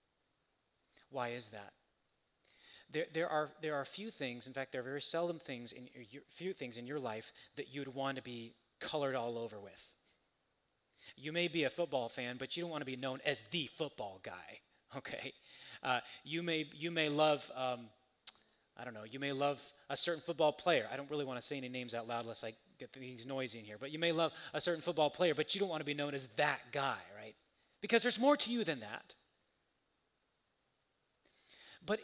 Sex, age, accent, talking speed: male, 30-49, American, 210 wpm